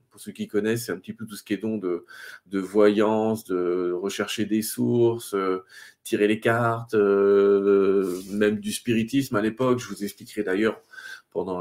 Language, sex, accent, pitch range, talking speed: French, male, French, 95-115 Hz, 180 wpm